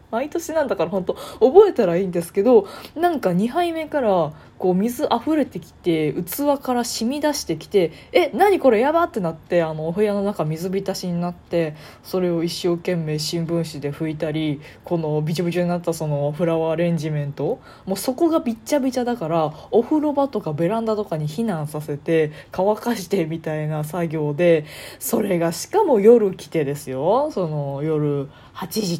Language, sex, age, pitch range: Japanese, female, 20-39, 155-225 Hz